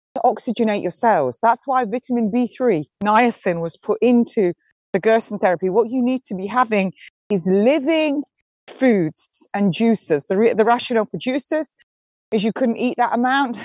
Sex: female